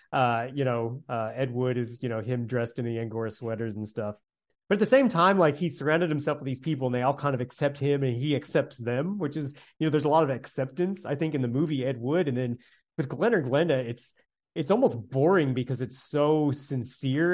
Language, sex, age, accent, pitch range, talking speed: English, male, 30-49, American, 130-170 Hz, 240 wpm